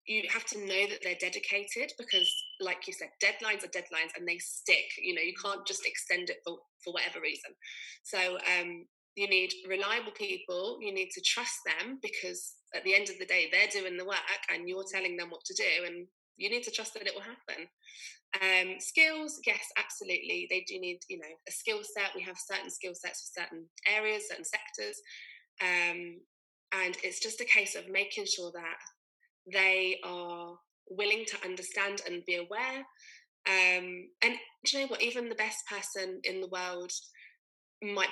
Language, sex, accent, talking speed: English, female, British, 190 wpm